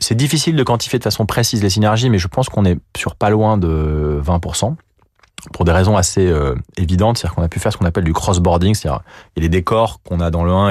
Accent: French